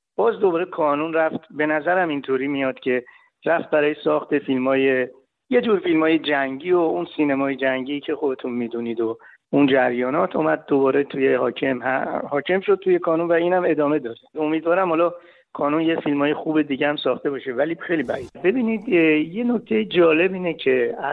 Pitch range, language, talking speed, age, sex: 130-170 Hz, Persian, 170 wpm, 60-79, male